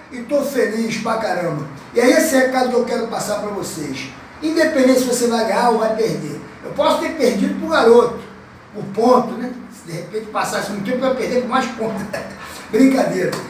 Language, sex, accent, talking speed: Portuguese, male, Brazilian, 210 wpm